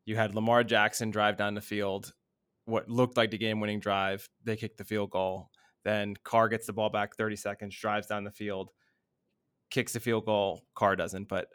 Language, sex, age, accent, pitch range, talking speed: English, male, 20-39, American, 105-125 Hz, 195 wpm